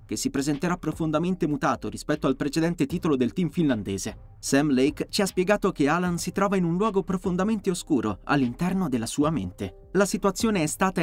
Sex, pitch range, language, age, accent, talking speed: male, 130-190 Hz, Italian, 30-49, native, 185 wpm